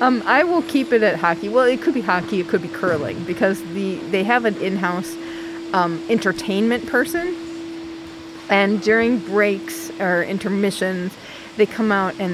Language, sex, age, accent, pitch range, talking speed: English, female, 30-49, American, 170-230 Hz, 165 wpm